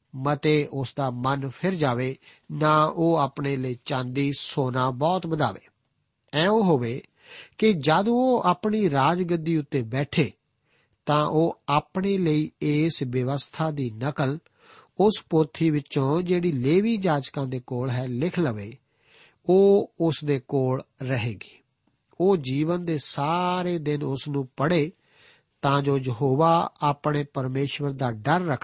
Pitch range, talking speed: 135-165 Hz, 100 wpm